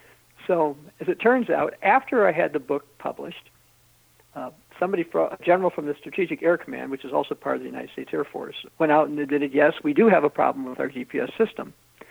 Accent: American